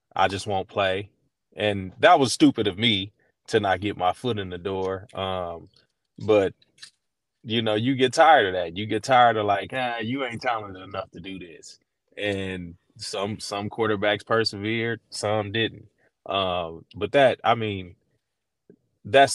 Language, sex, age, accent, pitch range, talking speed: English, male, 20-39, American, 95-115 Hz, 165 wpm